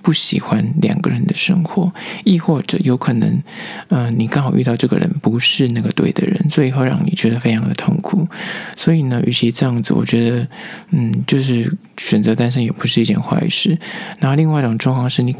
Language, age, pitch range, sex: Chinese, 20-39, 125-190 Hz, male